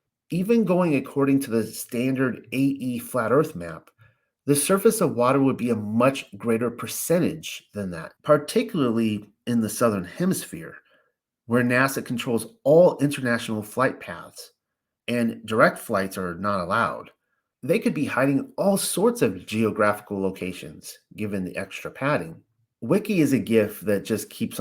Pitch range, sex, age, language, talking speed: 100-130 Hz, male, 30-49, English, 145 wpm